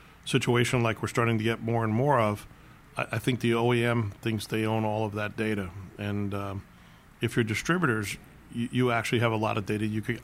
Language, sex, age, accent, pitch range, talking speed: English, male, 40-59, American, 105-120 Hz, 215 wpm